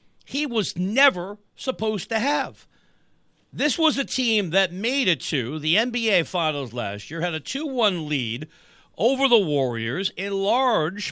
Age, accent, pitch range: 50-69, American, 135-205 Hz